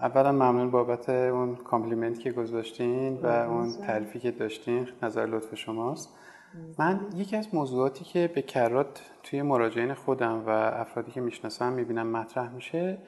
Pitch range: 120-155 Hz